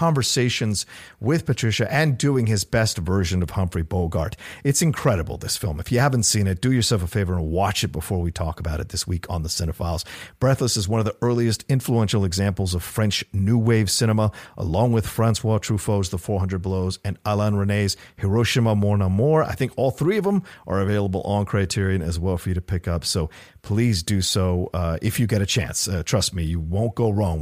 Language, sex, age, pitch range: English, male, 50-69, 90-115 Hz